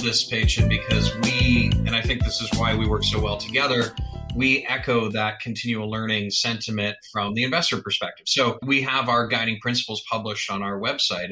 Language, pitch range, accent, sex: English, 105-120 Hz, American, male